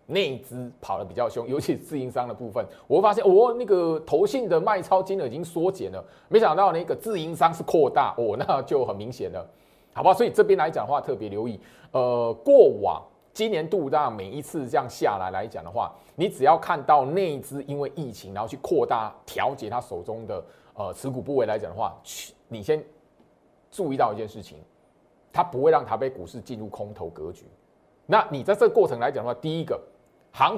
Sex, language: male, Chinese